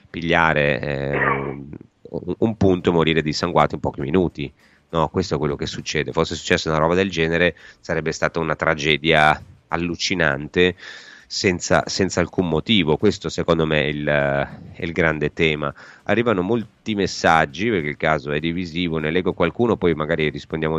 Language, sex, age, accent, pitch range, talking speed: Italian, male, 30-49, native, 75-85 Hz, 145 wpm